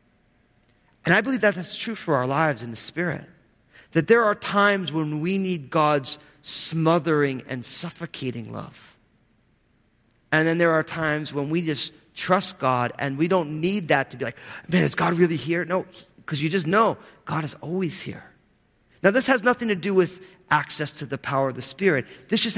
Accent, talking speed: American, 190 wpm